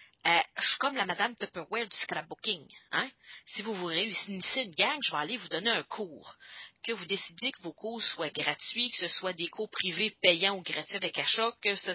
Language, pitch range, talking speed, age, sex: English, 185-270 Hz, 220 wpm, 40-59, female